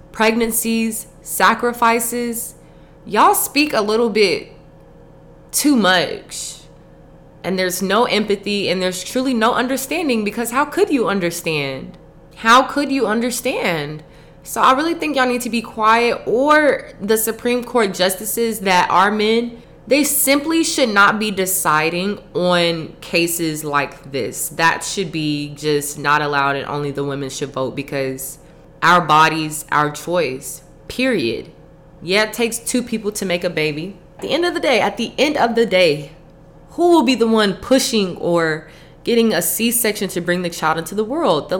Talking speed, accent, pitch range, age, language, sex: 160 wpm, American, 155-230 Hz, 20-39, English, female